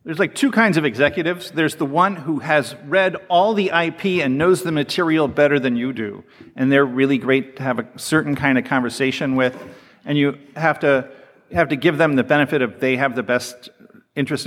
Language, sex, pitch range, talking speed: English, male, 130-155 Hz, 210 wpm